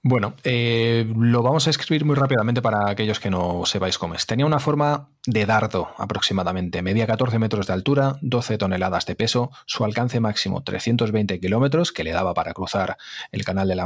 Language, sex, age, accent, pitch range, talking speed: Spanish, male, 30-49, Spanish, 95-125 Hz, 190 wpm